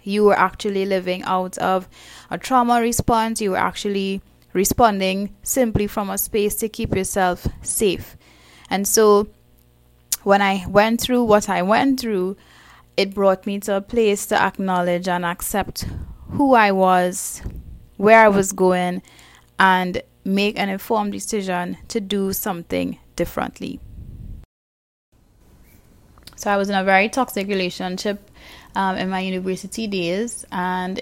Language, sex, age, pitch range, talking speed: English, female, 10-29, 185-210 Hz, 135 wpm